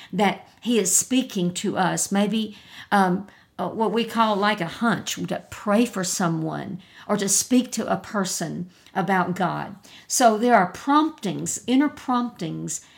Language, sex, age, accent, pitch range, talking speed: English, female, 50-69, American, 180-230 Hz, 150 wpm